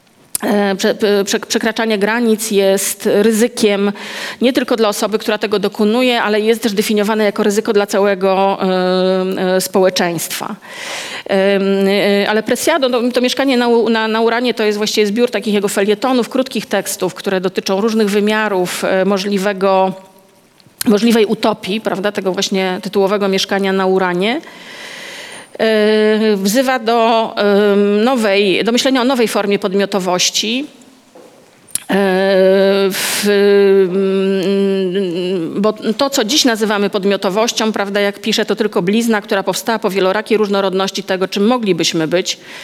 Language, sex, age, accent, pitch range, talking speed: Polish, female, 40-59, native, 195-225 Hz, 120 wpm